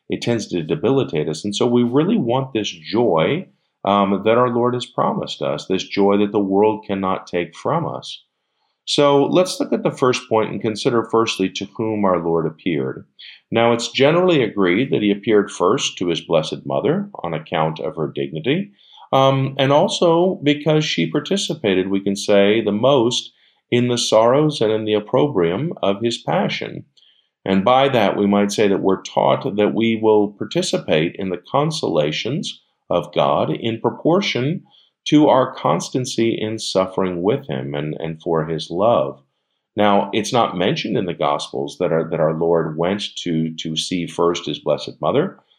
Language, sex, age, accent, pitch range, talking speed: English, male, 50-69, American, 90-120 Hz, 175 wpm